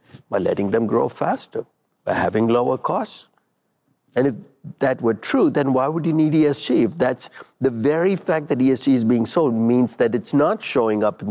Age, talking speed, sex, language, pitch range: 50-69, 195 wpm, male, English, 110-150 Hz